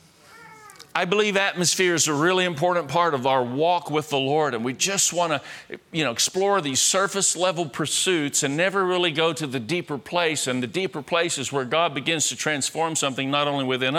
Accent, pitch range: American, 130-165 Hz